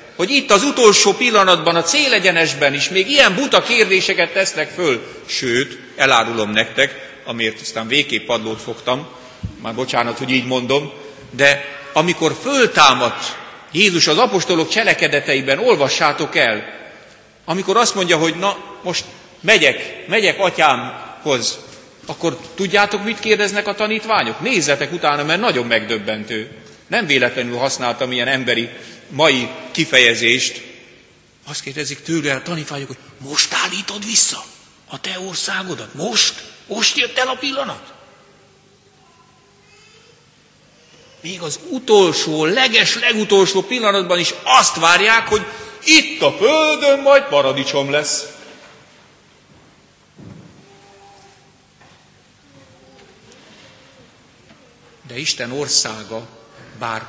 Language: Hungarian